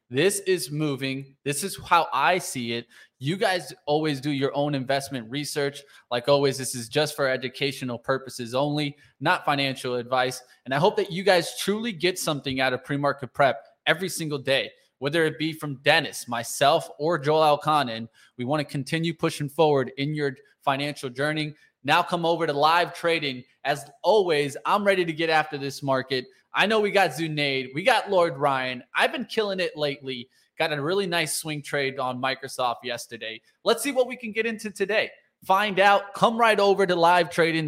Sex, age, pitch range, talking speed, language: male, 20-39, 140-180 Hz, 190 wpm, English